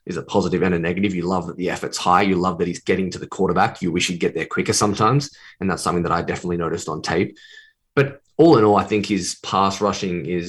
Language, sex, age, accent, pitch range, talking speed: English, male, 20-39, Australian, 95-115 Hz, 265 wpm